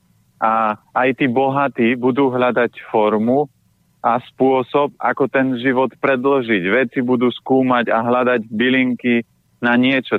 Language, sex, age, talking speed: Slovak, male, 30-49, 125 wpm